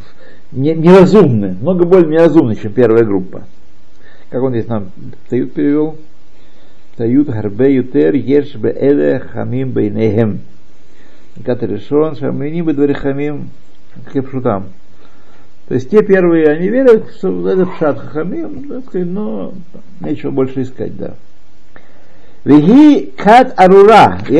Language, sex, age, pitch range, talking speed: Russian, male, 60-79, 105-160 Hz, 110 wpm